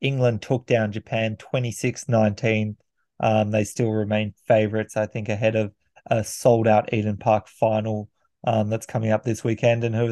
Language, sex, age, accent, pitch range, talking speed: English, male, 20-39, Australian, 110-120 Hz, 165 wpm